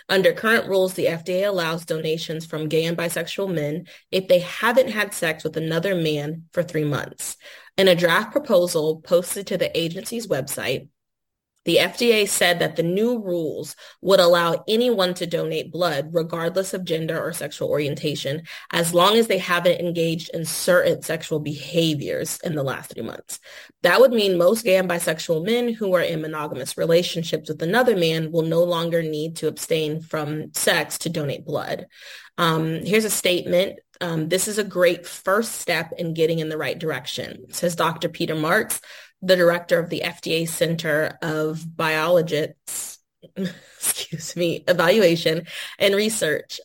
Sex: female